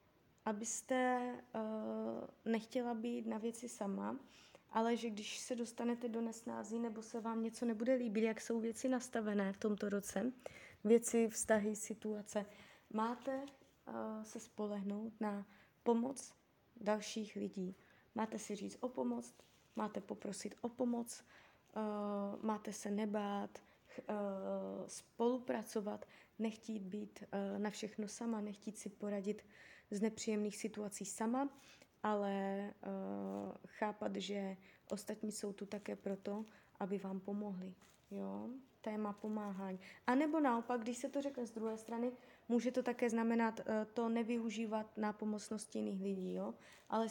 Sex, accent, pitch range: female, native, 200-235 Hz